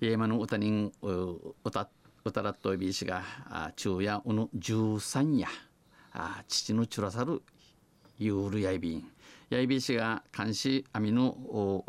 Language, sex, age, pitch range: Japanese, male, 50-69, 95-125 Hz